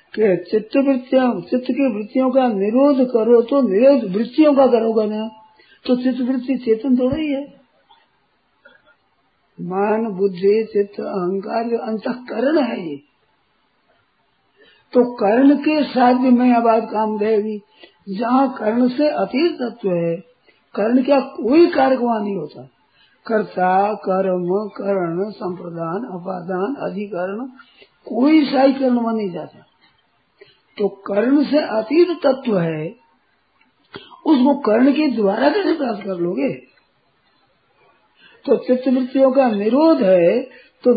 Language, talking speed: Hindi, 115 wpm